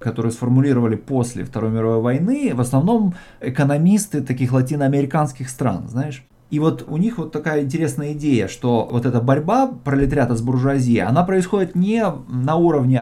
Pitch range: 115-150 Hz